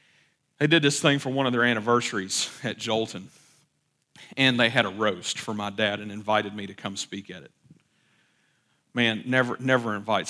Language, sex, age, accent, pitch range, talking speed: English, male, 40-59, American, 110-140 Hz, 180 wpm